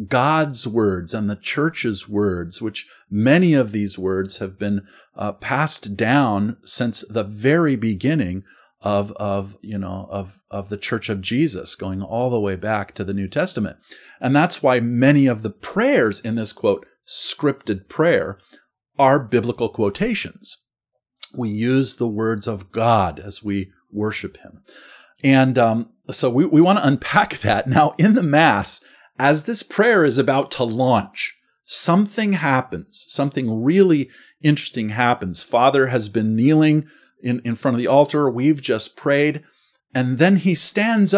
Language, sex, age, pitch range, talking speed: English, male, 40-59, 105-140 Hz, 155 wpm